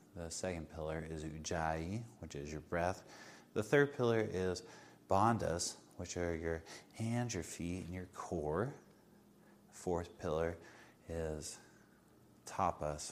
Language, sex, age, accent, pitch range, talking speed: English, male, 30-49, American, 80-105 Hz, 130 wpm